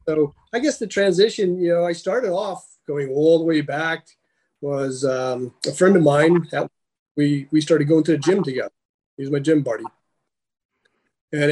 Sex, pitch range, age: male, 135-180 Hz, 30-49